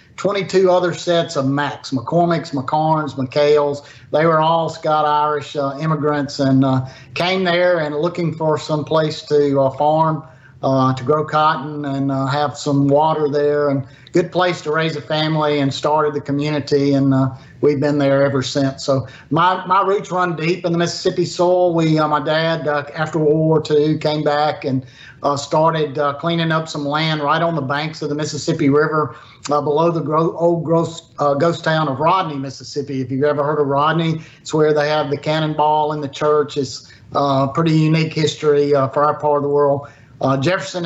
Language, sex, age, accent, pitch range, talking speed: English, male, 50-69, American, 140-165 Hz, 195 wpm